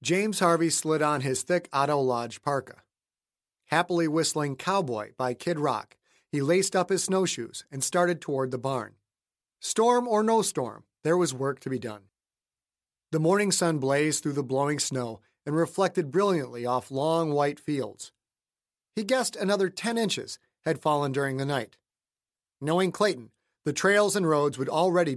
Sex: male